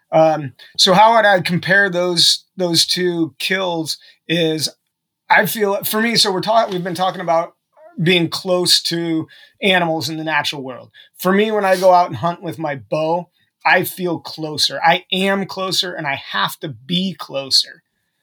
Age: 30-49